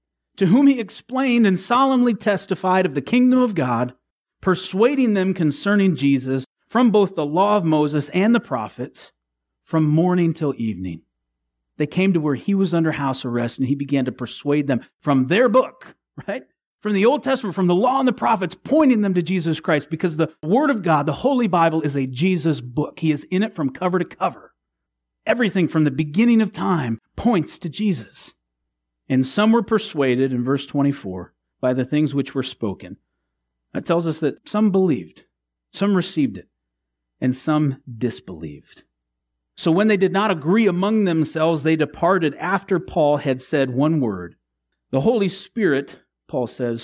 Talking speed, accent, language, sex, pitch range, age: 175 wpm, American, English, male, 110-185 Hz, 40-59